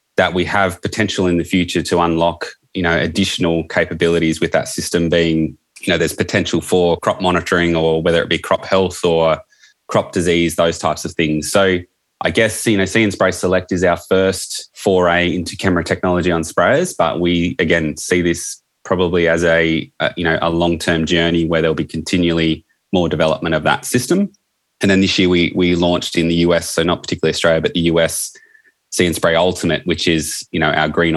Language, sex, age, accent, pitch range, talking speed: English, male, 20-39, Australian, 80-95 Hz, 200 wpm